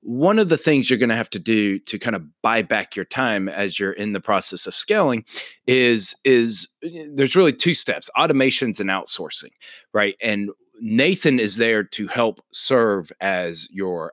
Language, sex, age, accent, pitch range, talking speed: English, male, 30-49, American, 100-140 Hz, 185 wpm